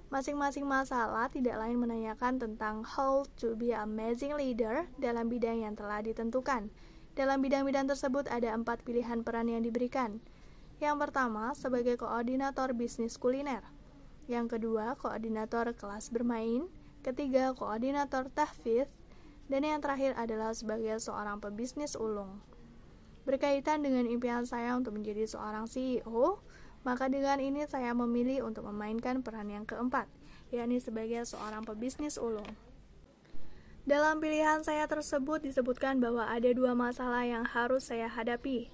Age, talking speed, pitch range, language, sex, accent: 20-39, 130 wpm, 225-270 Hz, Indonesian, female, native